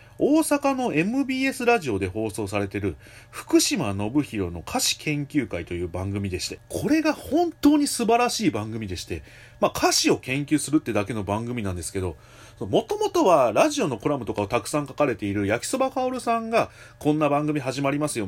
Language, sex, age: Japanese, male, 30-49